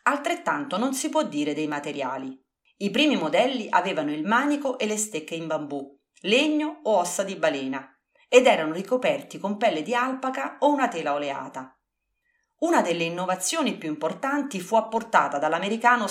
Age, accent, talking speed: 40-59, native, 155 wpm